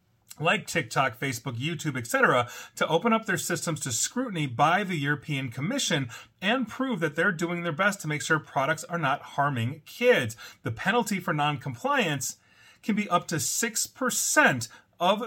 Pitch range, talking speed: 125-165 Hz, 160 wpm